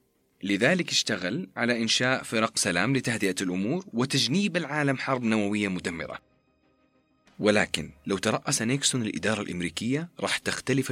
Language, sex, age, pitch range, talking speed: Arabic, male, 30-49, 95-140 Hz, 115 wpm